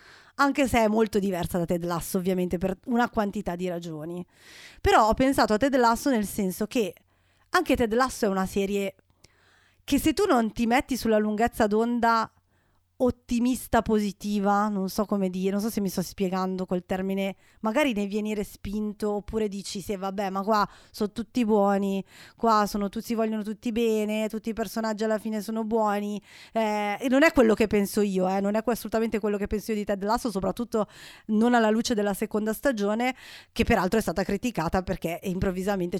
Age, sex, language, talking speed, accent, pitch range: 30-49, female, Italian, 185 wpm, native, 195-235 Hz